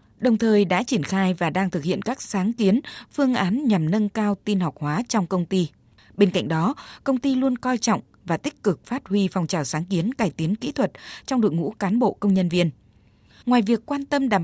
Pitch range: 175-225 Hz